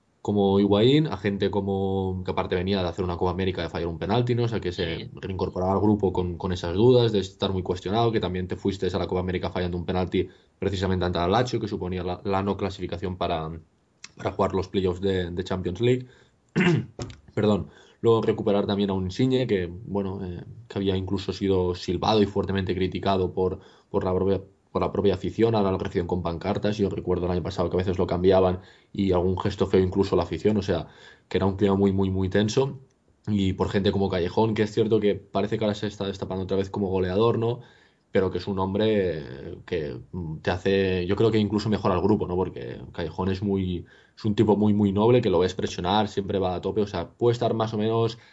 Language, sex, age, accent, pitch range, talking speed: Spanish, male, 20-39, Spanish, 90-105 Hz, 225 wpm